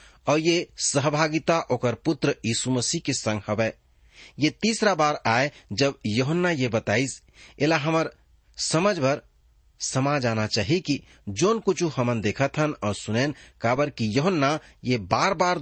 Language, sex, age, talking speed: English, male, 40-59, 145 wpm